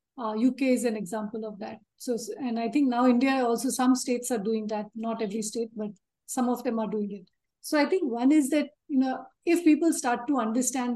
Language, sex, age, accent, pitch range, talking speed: English, female, 50-69, Indian, 230-260 Hz, 230 wpm